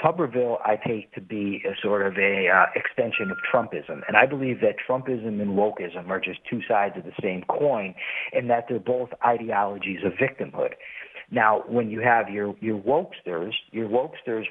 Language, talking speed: English, 180 wpm